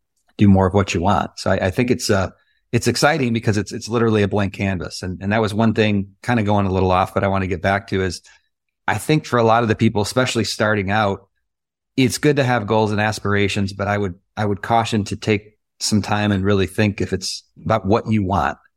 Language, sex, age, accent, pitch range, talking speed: English, male, 30-49, American, 95-110 Hz, 250 wpm